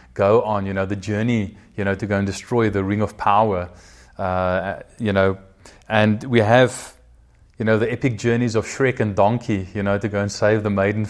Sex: male